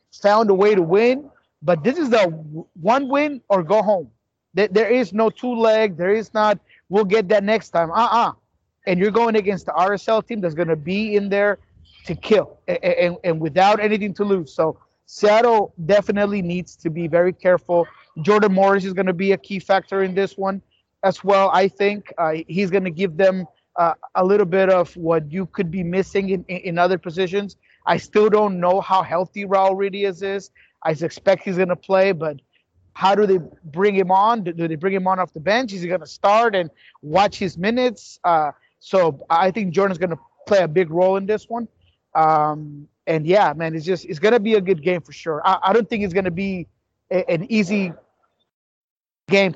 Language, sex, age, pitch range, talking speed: English, male, 30-49, 170-205 Hz, 215 wpm